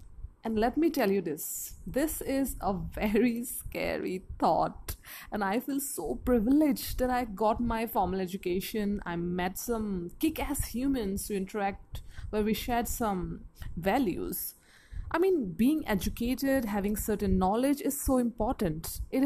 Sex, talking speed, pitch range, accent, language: female, 145 wpm, 210-280 Hz, Indian, English